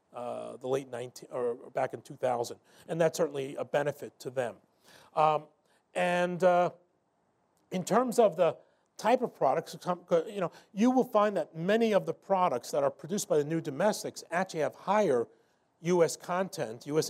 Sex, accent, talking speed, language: male, American, 170 wpm, English